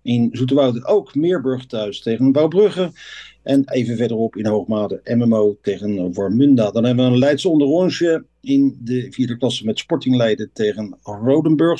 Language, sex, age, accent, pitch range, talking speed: Dutch, male, 50-69, Dutch, 115-150 Hz, 160 wpm